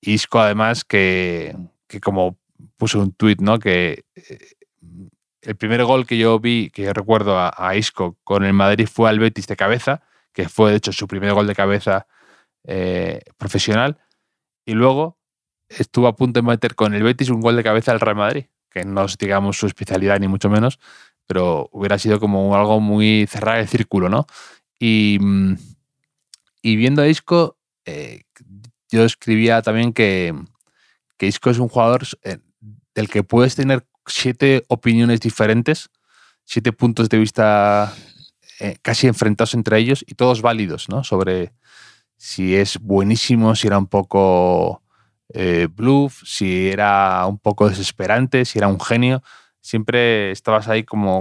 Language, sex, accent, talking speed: Spanish, male, Spanish, 160 wpm